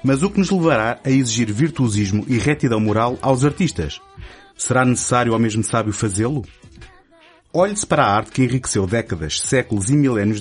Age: 30-49